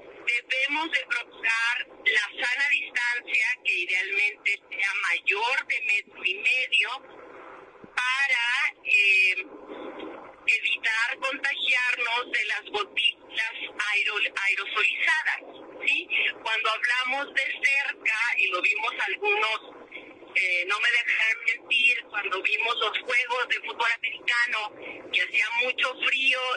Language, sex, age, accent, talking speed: Spanish, female, 40-59, Mexican, 100 wpm